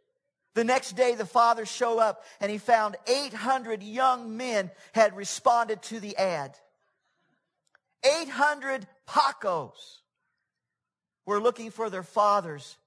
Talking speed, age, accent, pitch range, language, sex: 115 wpm, 50-69, American, 210-255 Hz, English, male